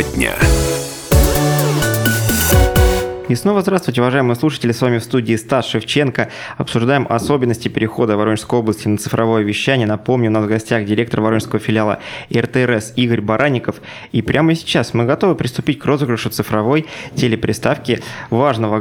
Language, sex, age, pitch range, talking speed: Russian, male, 20-39, 110-135 Hz, 130 wpm